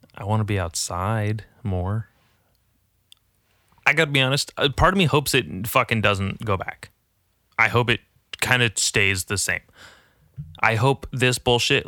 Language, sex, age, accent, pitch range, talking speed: English, male, 20-39, American, 95-120 Hz, 165 wpm